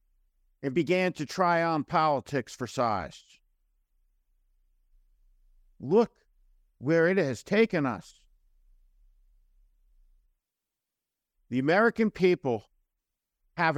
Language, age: English, 50-69